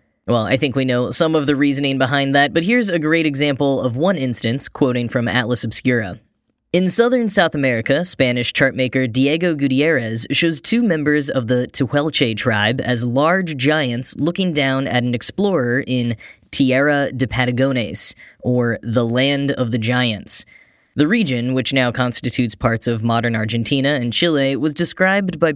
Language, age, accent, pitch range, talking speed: English, 10-29, American, 125-155 Hz, 165 wpm